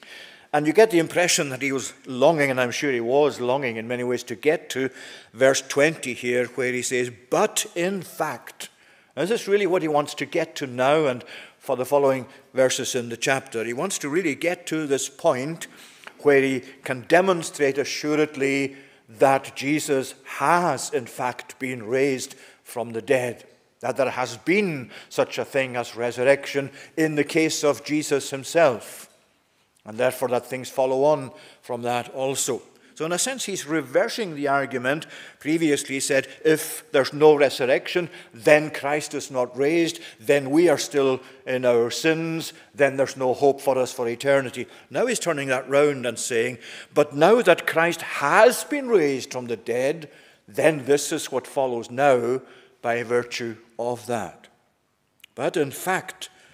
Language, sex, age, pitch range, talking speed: English, male, 50-69, 125-155 Hz, 170 wpm